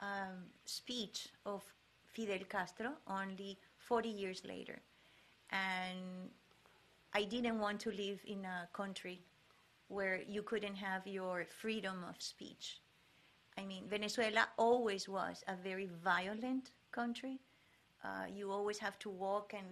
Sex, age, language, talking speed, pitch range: female, 30-49, English, 130 wpm, 195-235 Hz